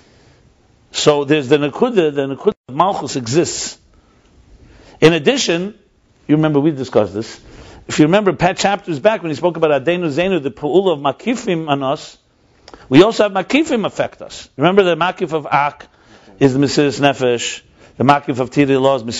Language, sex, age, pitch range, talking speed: English, male, 50-69, 135-180 Hz, 165 wpm